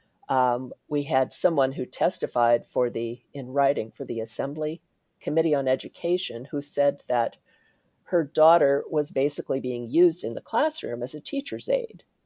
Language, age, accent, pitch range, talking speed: English, 50-69, American, 130-175 Hz, 155 wpm